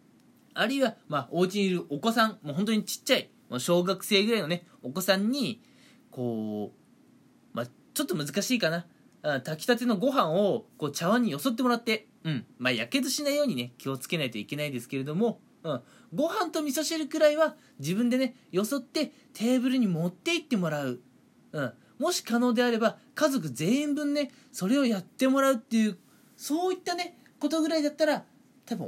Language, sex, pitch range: Japanese, male, 180-275 Hz